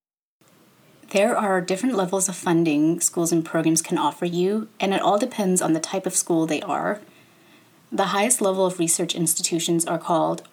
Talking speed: 175 wpm